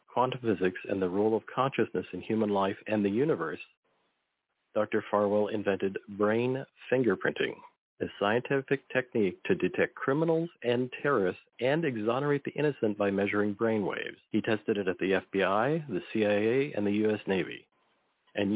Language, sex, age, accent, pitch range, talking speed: English, male, 50-69, American, 100-125 Hz, 150 wpm